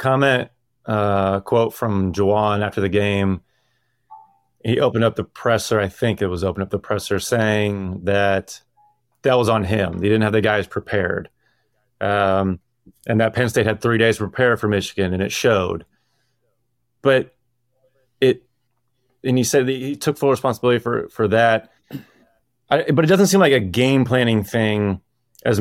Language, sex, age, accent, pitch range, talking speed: English, male, 30-49, American, 105-125 Hz, 170 wpm